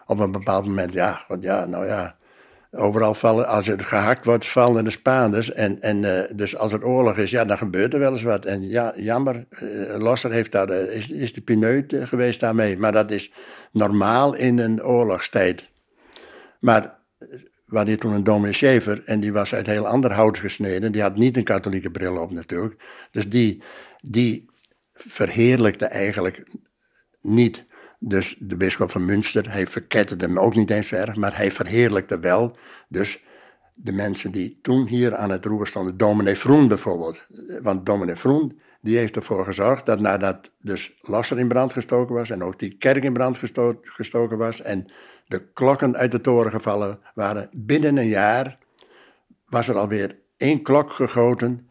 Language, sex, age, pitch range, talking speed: Dutch, male, 60-79, 100-120 Hz, 175 wpm